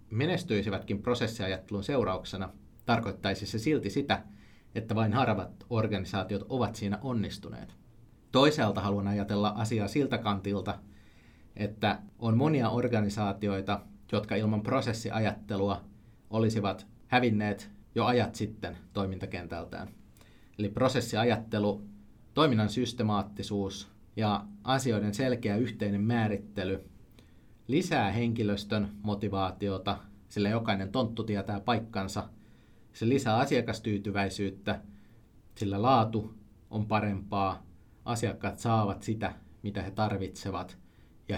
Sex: male